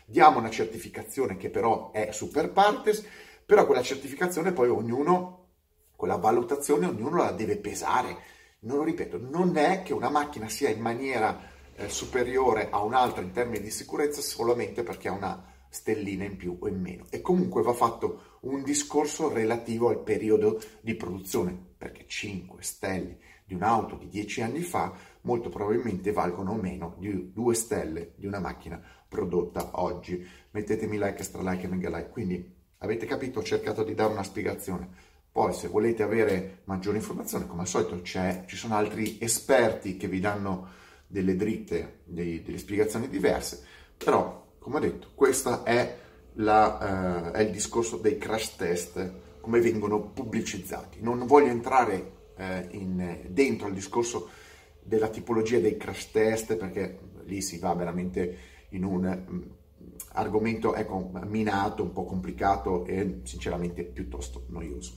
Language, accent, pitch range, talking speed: Italian, native, 90-110 Hz, 150 wpm